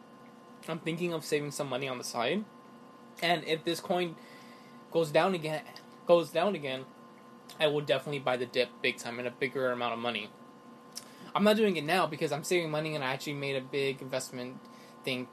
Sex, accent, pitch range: male, American, 135-180 Hz